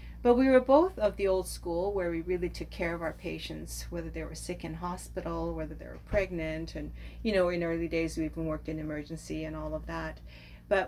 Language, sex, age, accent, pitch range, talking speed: English, female, 40-59, American, 155-190 Hz, 230 wpm